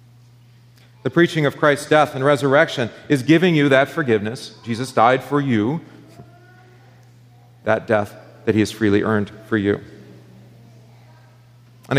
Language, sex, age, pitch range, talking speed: English, male, 40-59, 110-145 Hz, 130 wpm